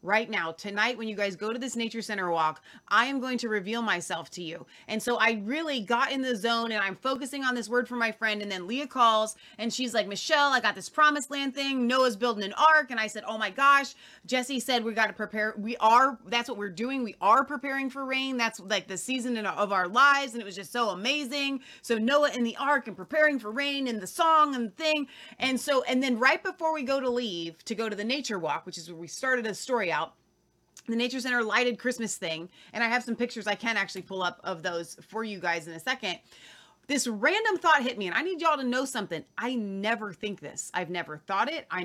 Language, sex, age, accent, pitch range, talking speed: English, female, 30-49, American, 205-265 Hz, 250 wpm